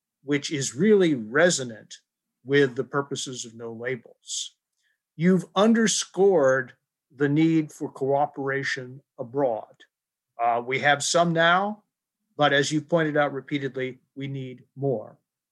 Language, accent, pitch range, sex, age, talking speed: English, American, 135-175 Hz, male, 50-69, 120 wpm